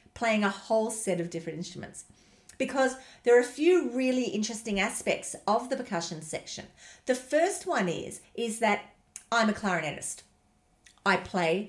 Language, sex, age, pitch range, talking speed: English, female, 40-59, 170-220 Hz, 155 wpm